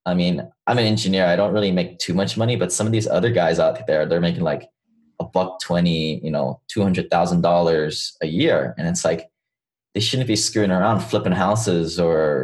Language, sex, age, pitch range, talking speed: English, male, 20-39, 85-100 Hz, 210 wpm